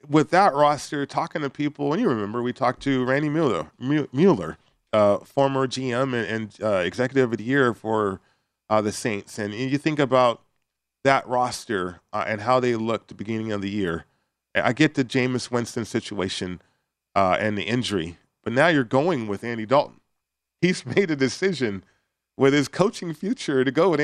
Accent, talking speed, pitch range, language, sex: American, 185 wpm, 110-140 Hz, English, male